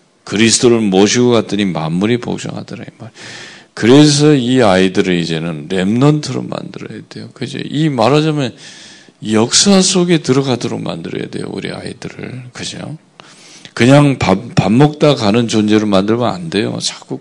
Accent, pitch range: native, 100-145 Hz